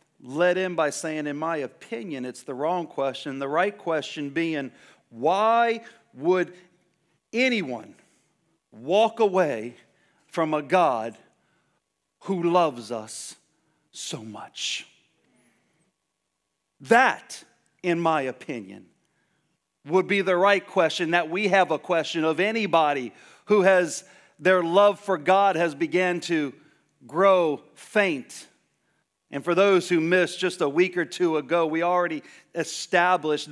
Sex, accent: male, American